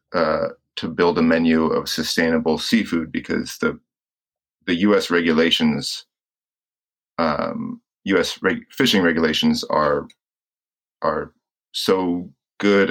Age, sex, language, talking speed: 30-49, male, English, 100 wpm